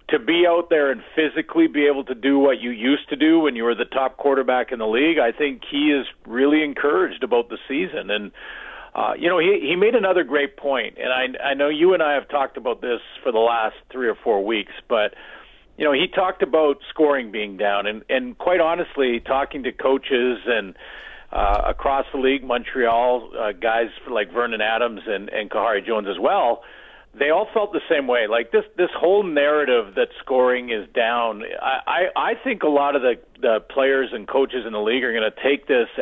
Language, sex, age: English, male, 50-69